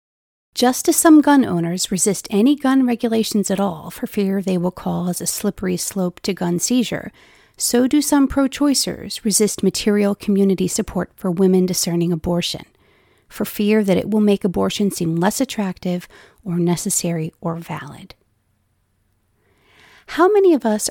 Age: 40-59